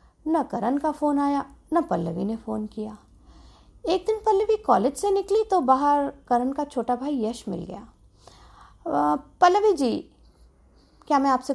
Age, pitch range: 50-69, 220-335 Hz